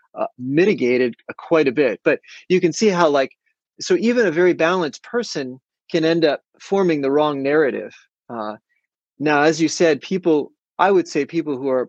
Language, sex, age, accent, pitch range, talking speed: English, male, 30-49, American, 125-160 Hz, 180 wpm